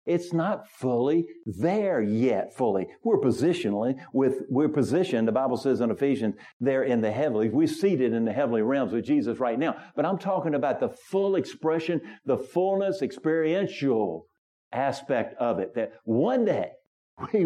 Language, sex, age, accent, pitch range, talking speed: English, male, 50-69, American, 110-150 Hz, 160 wpm